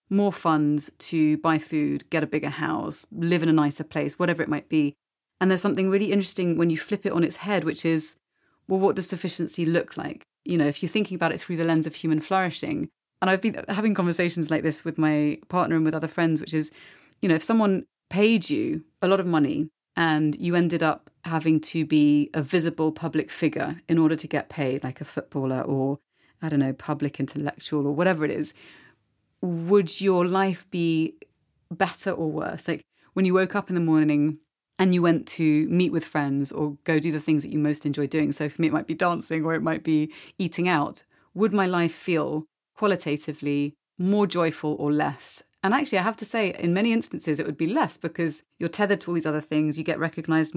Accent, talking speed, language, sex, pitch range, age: British, 220 wpm, English, female, 155-180 Hz, 30-49